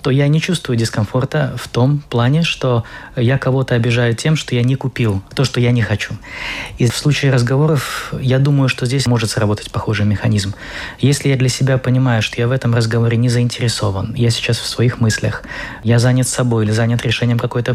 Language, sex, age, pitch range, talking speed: Russian, male, 20-39, 115-130 Hz, 195 wpm